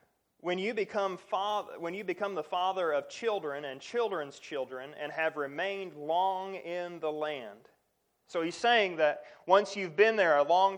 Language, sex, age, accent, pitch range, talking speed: English, male, 30-49, American, 155-205 Hz, 175 wpm